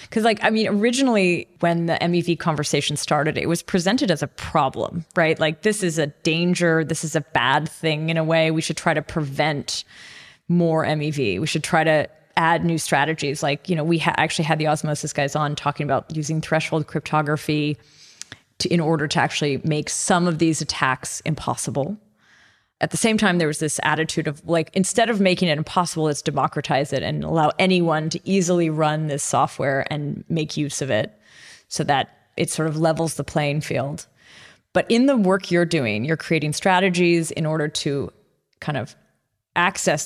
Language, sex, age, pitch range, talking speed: English, female, 30-49, 150-175 Hz, 185 wpm